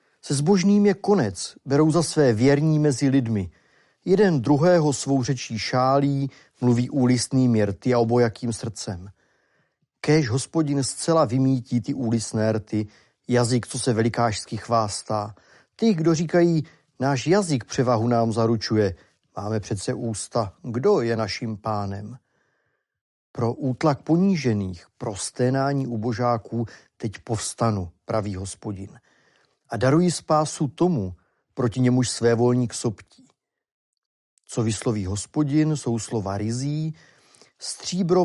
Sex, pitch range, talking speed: male, 110-145 Hz, 115 wpm